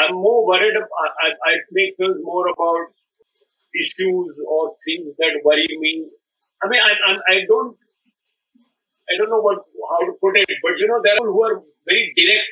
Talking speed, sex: 190 wpm, male